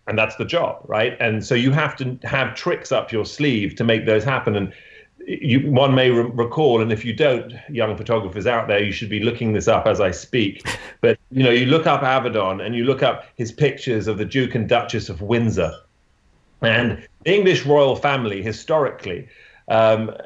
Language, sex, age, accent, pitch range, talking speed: English, male, 40-59, British, 110-140 Hz, 200 wpm